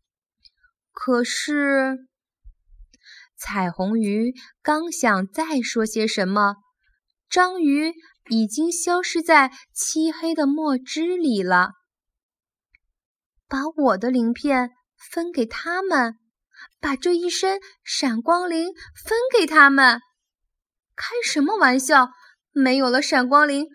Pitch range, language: 225-320 Hz, Chinese